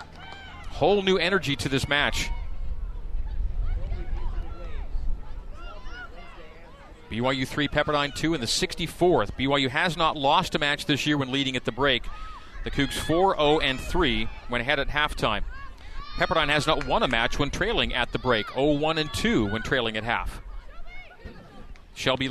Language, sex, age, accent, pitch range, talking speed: English, male, 40-59, American, 130-190 Hz, 145 wpm